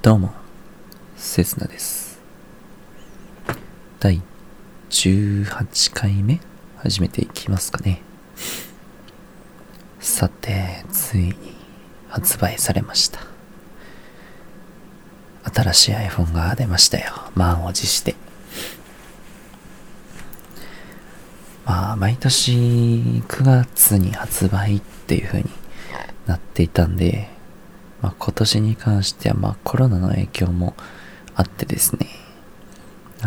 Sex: male